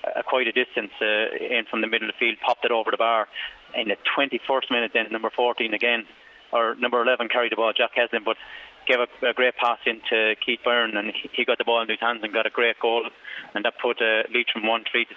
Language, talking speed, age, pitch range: English, 245 wpm, 30-49, 115-130 Hz